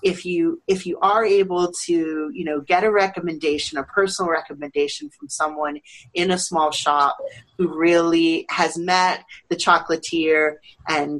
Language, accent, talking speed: English, American, 150 wpm